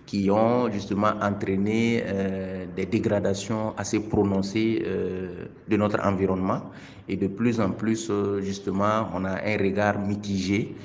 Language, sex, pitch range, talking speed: French, male, 95-105 Hz, 140 wpm